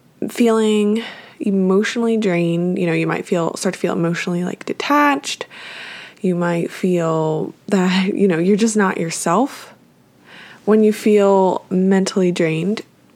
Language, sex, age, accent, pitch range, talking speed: English, female, 20-39, American, 180-220 Hz, 130 wpm